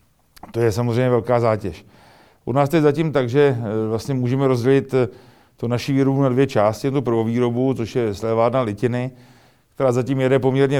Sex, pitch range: male, 115-130 Hz